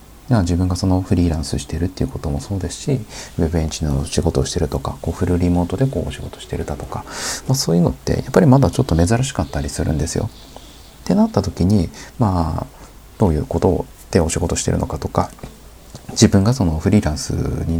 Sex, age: male, 30-49